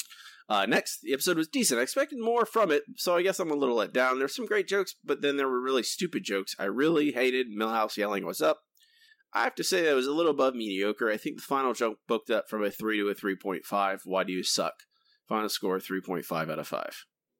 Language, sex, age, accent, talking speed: English, male, 30-49, American, 240 wpm